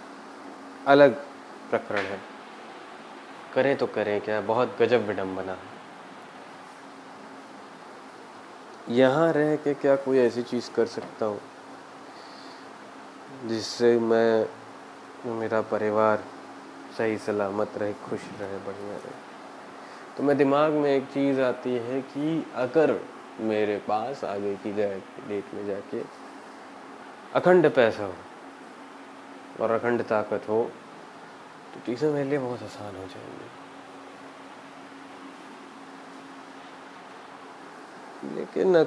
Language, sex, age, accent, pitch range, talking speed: Hindi, male, 20-39, native, 105-140 Hz, 95 wpm